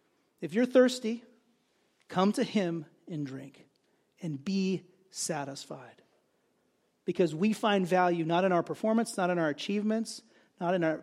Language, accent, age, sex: English, American, 40-59, male